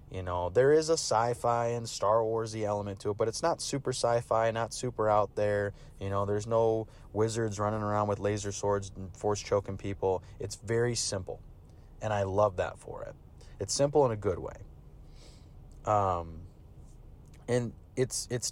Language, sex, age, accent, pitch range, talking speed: English, male, 20-39, American, 95-120 Hz, 180 wpm